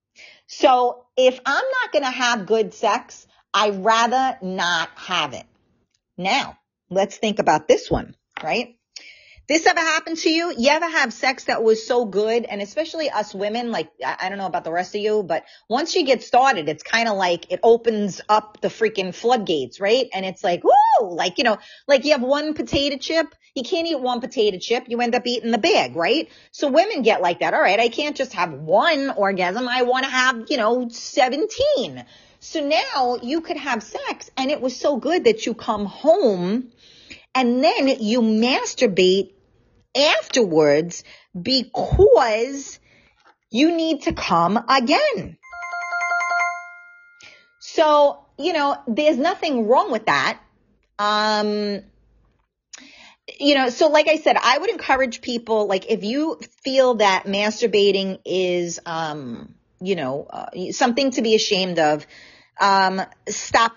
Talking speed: 160 wpm